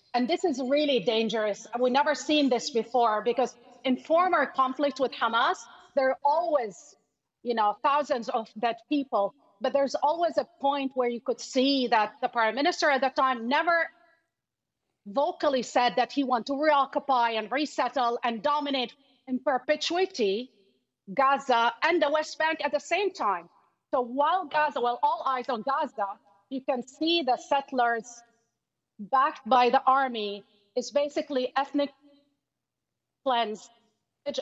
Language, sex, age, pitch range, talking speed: English, female, 40-59, 235-290 Hz, 150 wpm